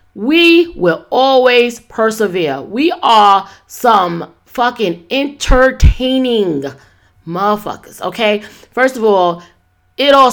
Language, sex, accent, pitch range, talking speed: English, female, American, 170-220 Hz, 95 wpm